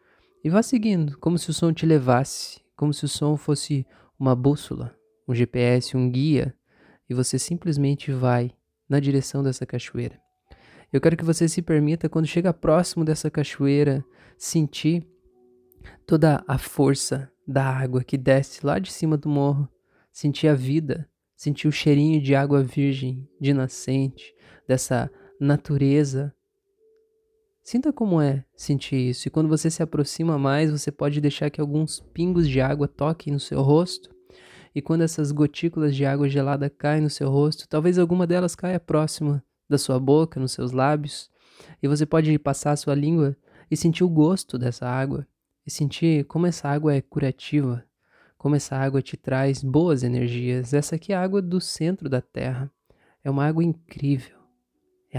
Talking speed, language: 165 wpm, Portuguese